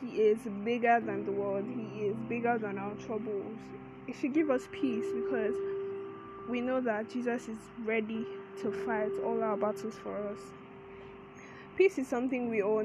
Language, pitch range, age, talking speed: English, 200-250 Hz, 10-29, 170 wpm